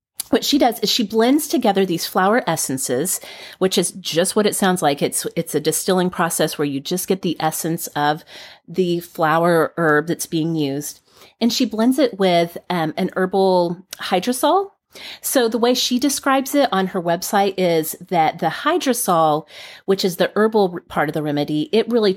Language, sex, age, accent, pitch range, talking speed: English, female, 30-49, American, 160-215 Hz, 180 wpm